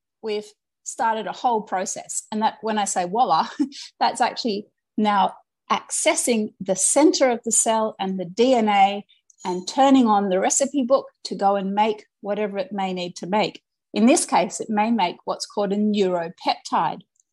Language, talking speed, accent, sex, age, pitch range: English, 170 wpm, Australian, female, 30-49, 200-255 Hz